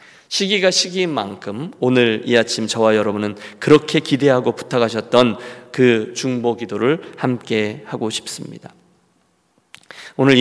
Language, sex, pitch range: Korean, male, 110-130 Hz